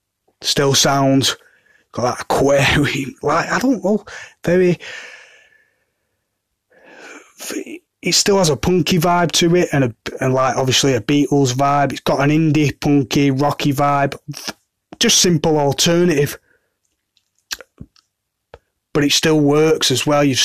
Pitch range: 120-150 Hz